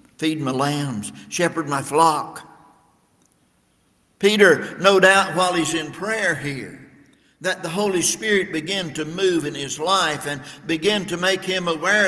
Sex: male